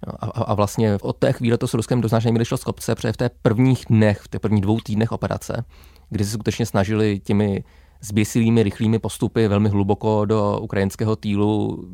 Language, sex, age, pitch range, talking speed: Czech, male, 20-39, 95-110 Hz, 185 wpm